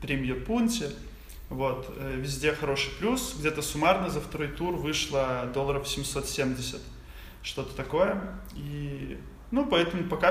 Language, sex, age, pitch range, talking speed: Russian, male, 20-39, 145-185 Hz, 110 wpm